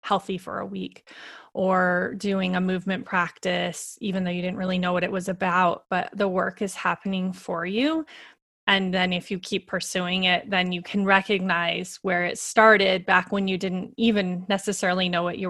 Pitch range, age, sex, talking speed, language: 180-205 Hz, 20-39, female, 190 wpm, English